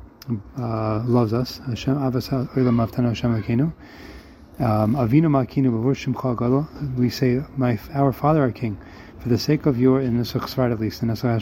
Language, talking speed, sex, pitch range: English, 165 wpm, male, 110-130 Hz